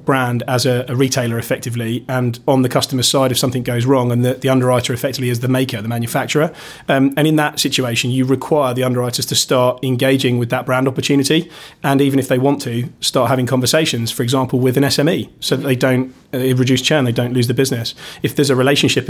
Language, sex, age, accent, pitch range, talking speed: English, male, 30-49, British, 125-140 Hz, 220 wpm